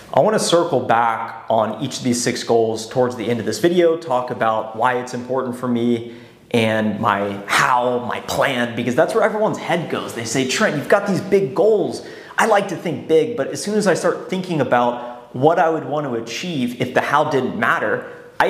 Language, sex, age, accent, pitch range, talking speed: English, male, 30-49, American, 120-165 Hz, 215 wpm